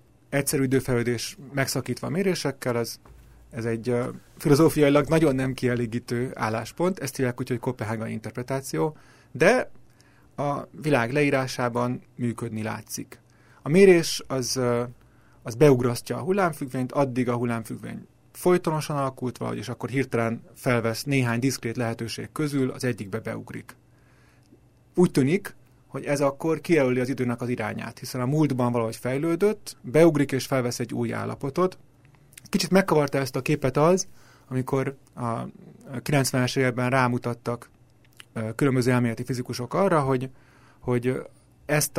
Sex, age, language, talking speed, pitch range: male, 30-49, Hungarian, 125 wpm, 120-145 Hz